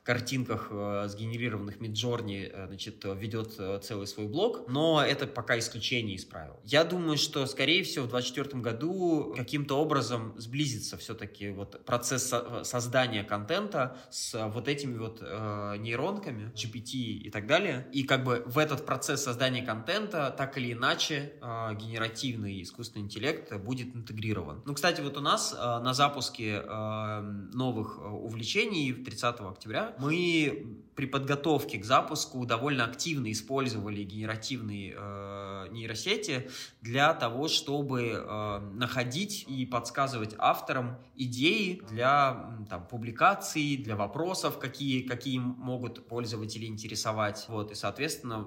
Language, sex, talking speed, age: Russian, male, 120 wpm, 20-39